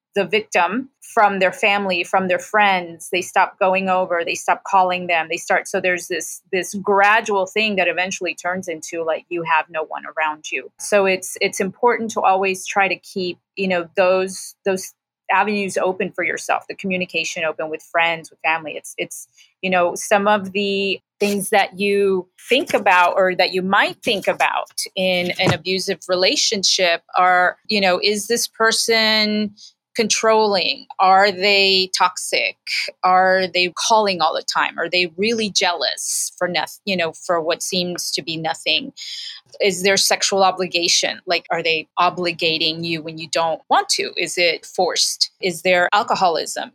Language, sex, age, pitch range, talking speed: English, female, 30-49, 175-210 Hz, 170 wpm